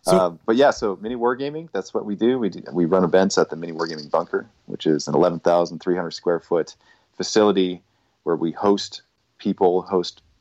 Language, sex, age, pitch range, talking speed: English, male, 30-49, 80-95 Hz, 175 wpm